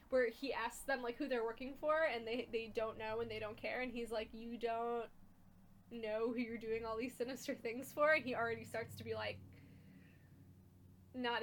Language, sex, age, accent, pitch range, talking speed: English, female, 10-29, American, 220-275 Hz, 210 wpm